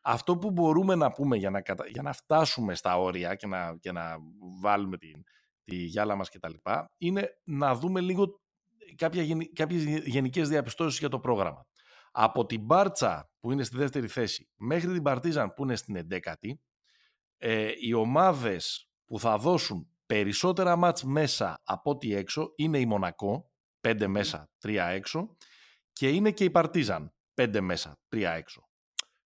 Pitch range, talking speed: 105-175 Hz, 150 wpm